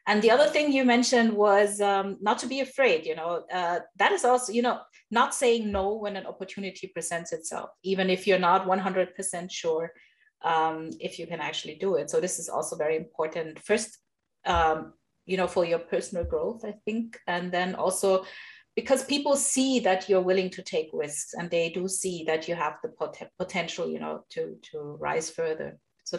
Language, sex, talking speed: English, female, 195 wpm